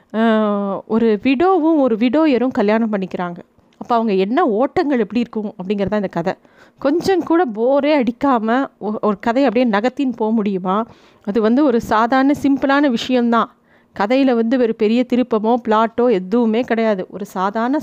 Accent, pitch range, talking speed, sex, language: native, 210-255 Hz, 140 wpm, female, Tamil